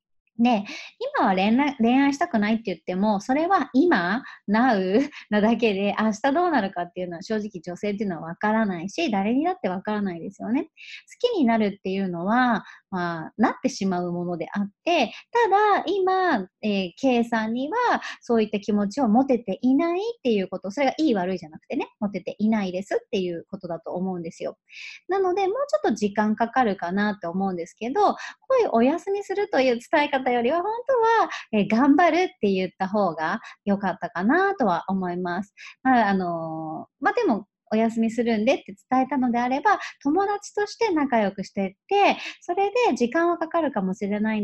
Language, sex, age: Japanese, male, 30-49